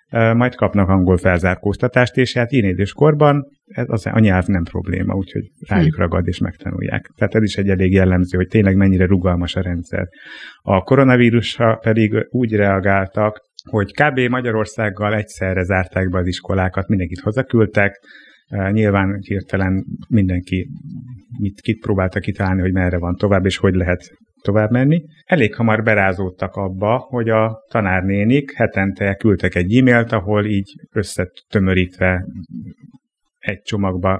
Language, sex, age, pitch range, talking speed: Hungarian, male, 30-49, 95-115 Hz, 130 wpm